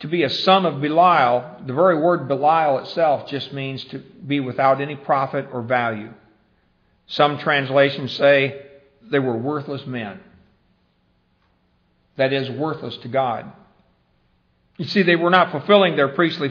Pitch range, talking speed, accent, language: 130-165 Hz, 145 wpm, American, English